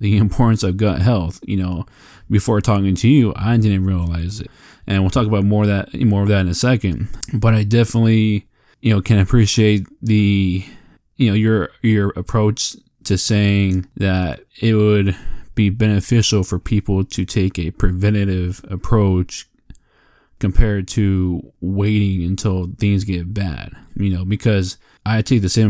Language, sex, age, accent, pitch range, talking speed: English, male, 20-39, American, 95-110 Hz, 160 wpm